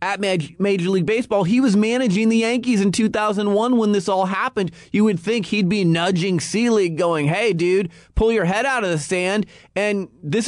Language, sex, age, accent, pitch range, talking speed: English, male, 30-49, American, 150-195 Hz, 195 wpm